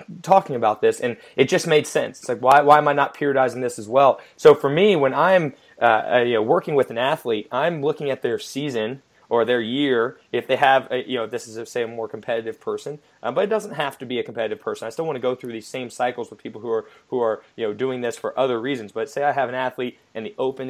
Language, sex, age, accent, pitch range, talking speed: English, male, 20-39, American, 115-150 Hz, 265 wpm